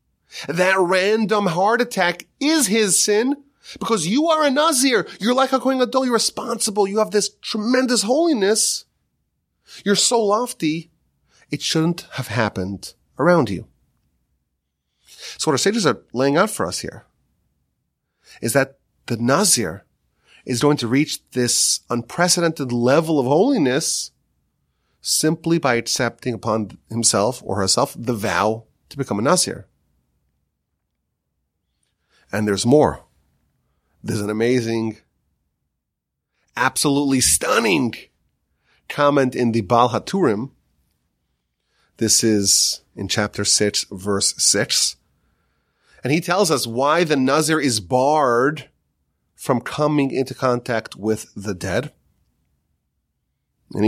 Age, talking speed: 30-49, 120 wpm